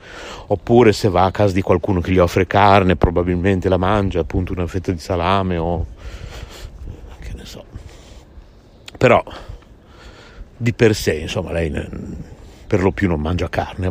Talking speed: 160 wpm